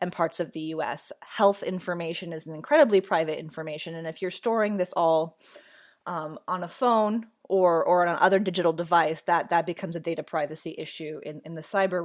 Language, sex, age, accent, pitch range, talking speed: English, female, 20-39, American, 165-225 Hz, 195 wpm